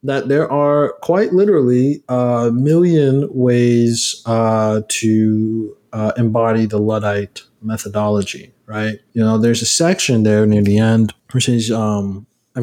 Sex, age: male, 20-39